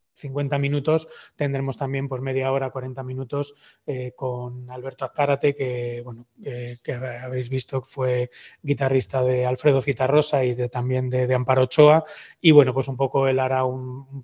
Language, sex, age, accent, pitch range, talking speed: Spanish, male, 20-39, Spanish, 130-150 Hz, 175 wpm